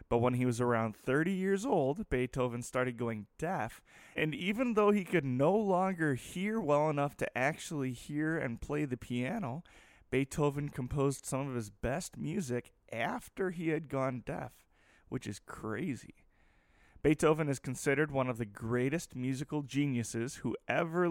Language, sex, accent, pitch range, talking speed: English, male, American, 115-155 Hz, 155 wpm